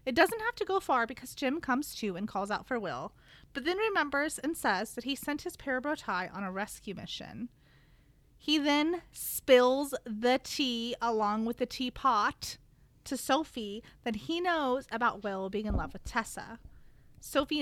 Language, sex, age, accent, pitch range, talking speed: English, female, 30-49, American, 205-280 Hz, 175 wpm